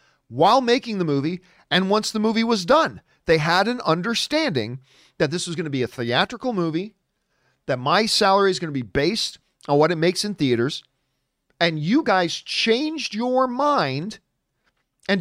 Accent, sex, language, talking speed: American, male, English, 175 wpm